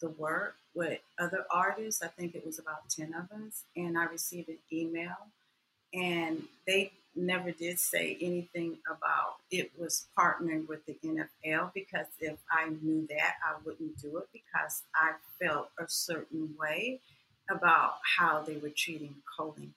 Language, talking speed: English, 160 wpm